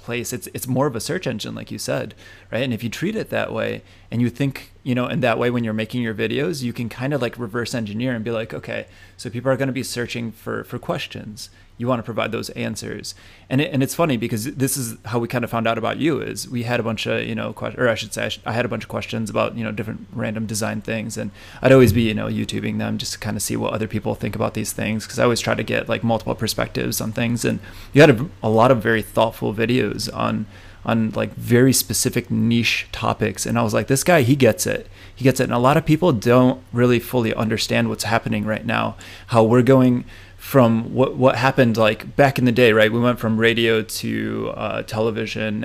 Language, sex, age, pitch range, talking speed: English, male, 20-39, 110-125 Hz, 260 wpm